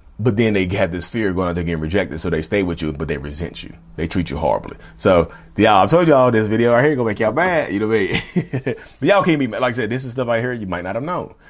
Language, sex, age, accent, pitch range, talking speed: English, male, 30-49, American, 95-120 Hz, 320 wpm